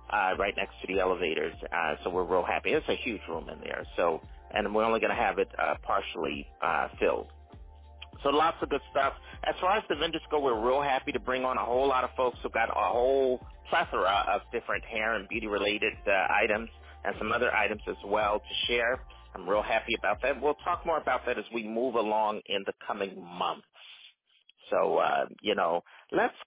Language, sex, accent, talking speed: English, male, American, 215 wpm